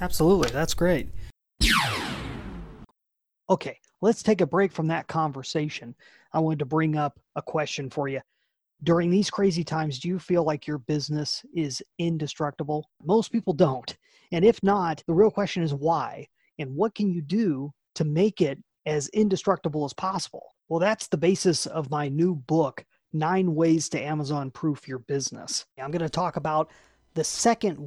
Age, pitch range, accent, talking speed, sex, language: 30-49, 150-185 Hz, American, 165 wpm, male, English